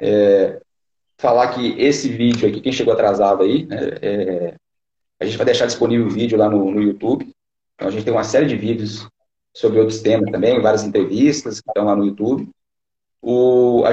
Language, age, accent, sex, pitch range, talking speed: Portuguese, 40-59, Brazilian, male, 105-135 Hz, 185 wpm